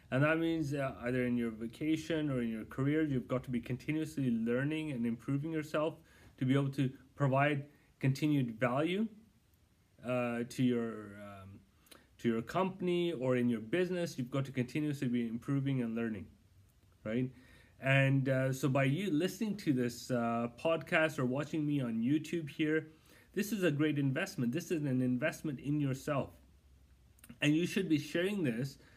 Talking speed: 170 wpm